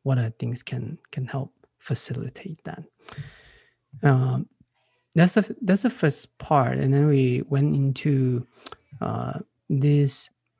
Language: English